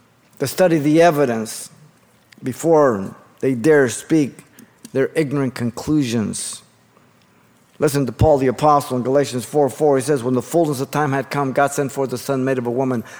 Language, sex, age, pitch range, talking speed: English, male, 50-69, 125-165 Hz, 170 wpm